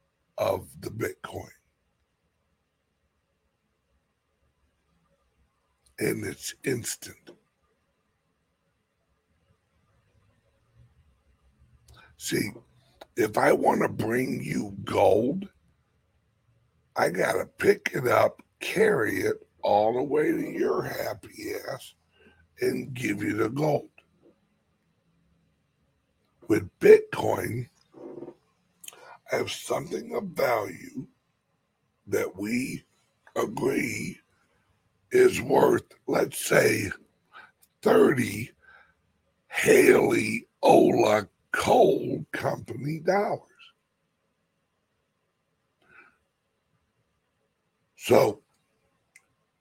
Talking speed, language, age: 65 wpm, English, 60-79